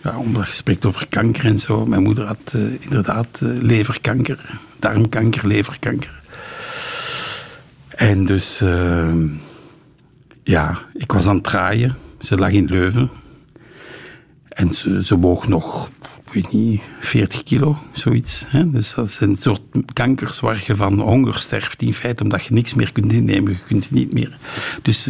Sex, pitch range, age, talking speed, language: male, 100-130 Hz, 60-79, 155 wpm, Dutch